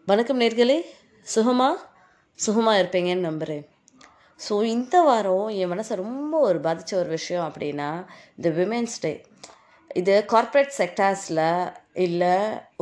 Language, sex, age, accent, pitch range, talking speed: Tamil, female, 20-39, native, 180-235 Hz, 110 wpm